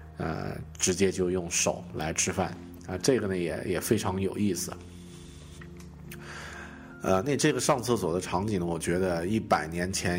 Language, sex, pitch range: Chinese, male, 85-105 Hz